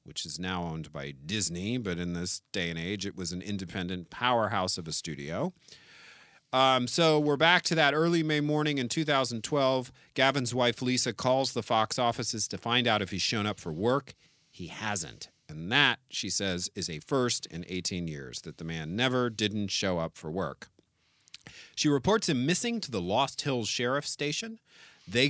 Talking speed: 185 wpm